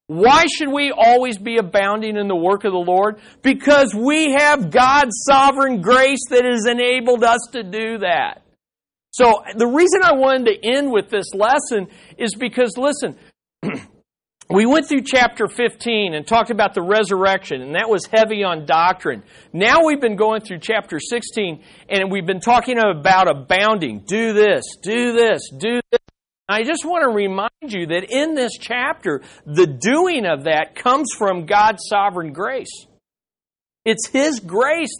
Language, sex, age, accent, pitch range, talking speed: English, male, 50-69, American, 200-265 Hz, 165 wpm